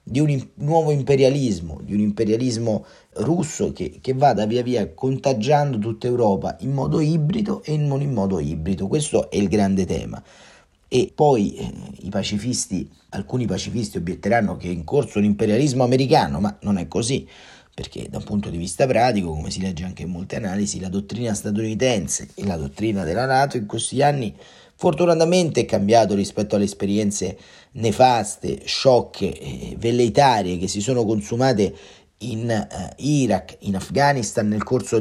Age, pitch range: 40-59, 95-125 Hz